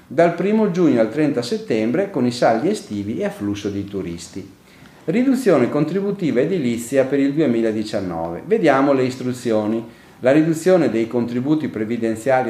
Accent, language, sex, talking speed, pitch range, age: native, Italian, male, 135 wpm, 110-180 Hz, 40-59